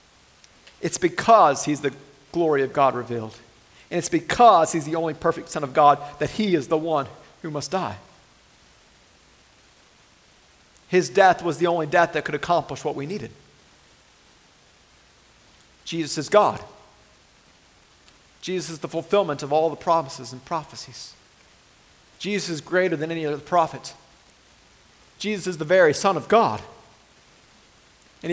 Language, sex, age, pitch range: English, male, 40-59, 145-175 Hz